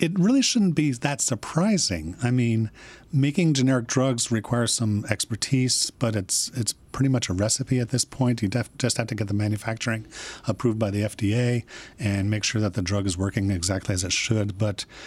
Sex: male